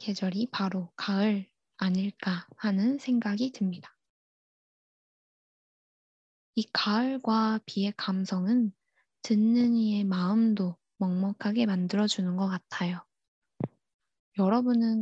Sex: female